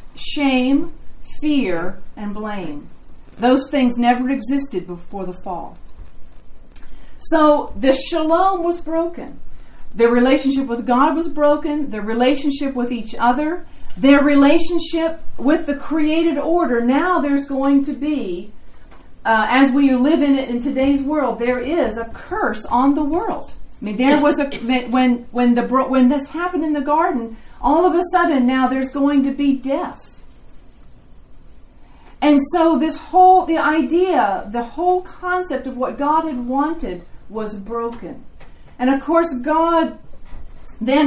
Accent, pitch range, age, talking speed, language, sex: American, 250-315 Hz, 40-59, 145 wpm, English, female